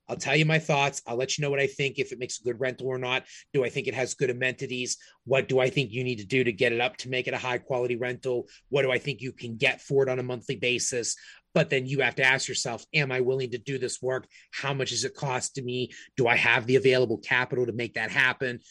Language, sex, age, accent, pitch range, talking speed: English, male, 30-49, American, 125-140 Hz, 290 wpm